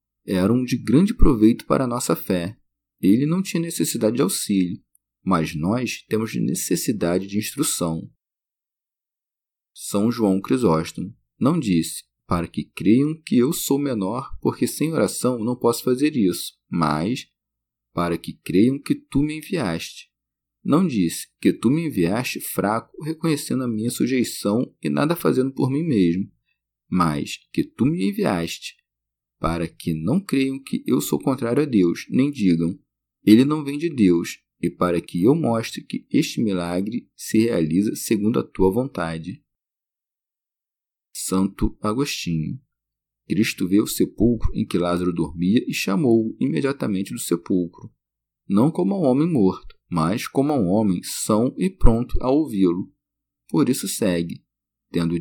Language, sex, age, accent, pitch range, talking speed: Portuguese, male, 40-59, Brazilian, 85-135 Hz, 150 wpm